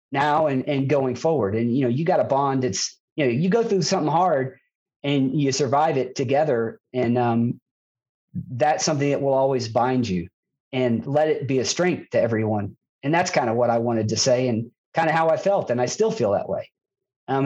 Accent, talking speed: American, 220 wpm